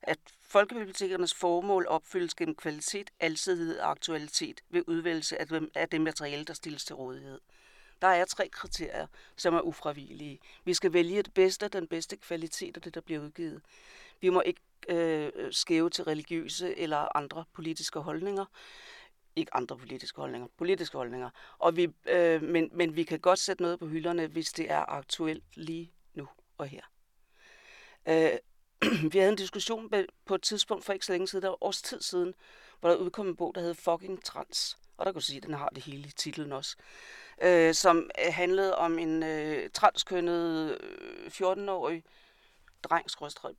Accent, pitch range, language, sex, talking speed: native, 160-200 Hz, Danish, female, 165 wpm